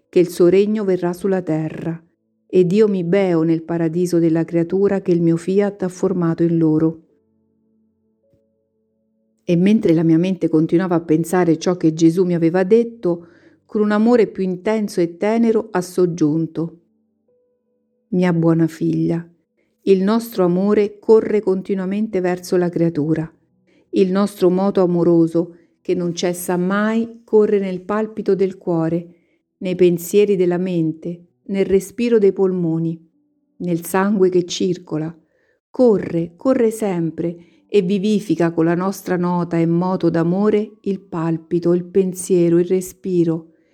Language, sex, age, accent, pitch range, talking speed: Italian, female, 50-69, native, 170-200 Hz, 135 wpm